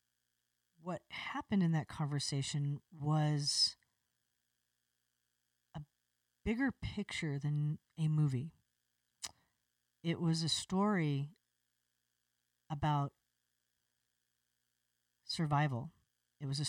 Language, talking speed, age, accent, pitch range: English, 75 wpm, 40-59, American, 130-160 Hz